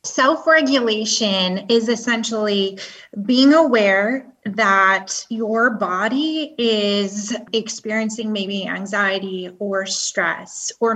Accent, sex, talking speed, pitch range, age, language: American, female, 80 wpm, 205-240 Hz, 20-39, English